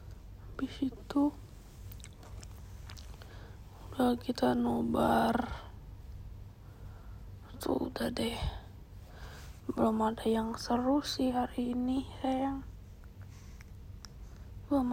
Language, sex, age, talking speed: Indonesian, female, 20-39, 65 wpm